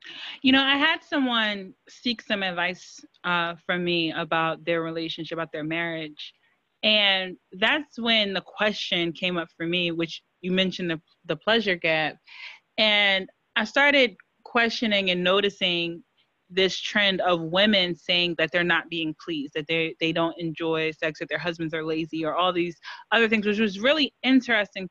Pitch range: 170-215 Hz